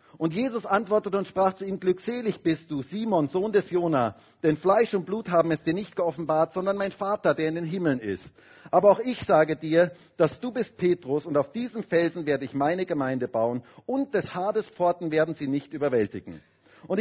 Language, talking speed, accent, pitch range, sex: German, 205 wpm, German, 145-200 Hz, male